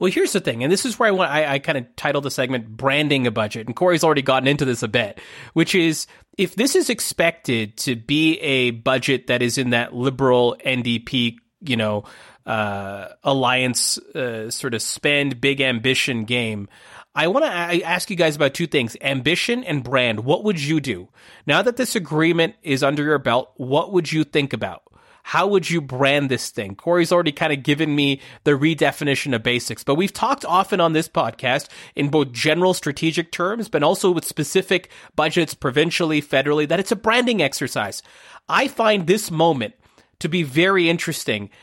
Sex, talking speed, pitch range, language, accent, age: male, 190 wpm, 130-175 Hz, English, American, 30-49